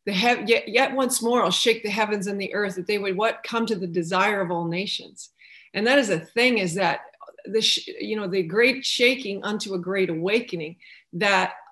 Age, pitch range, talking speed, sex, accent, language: 40-59, 190-235 Hz, 220 wpm, female, American, English